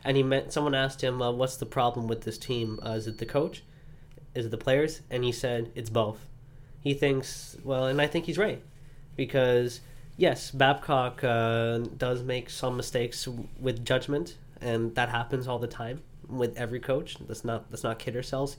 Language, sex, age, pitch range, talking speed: English, male, 20-39, 120-140 Hz, 185 wpm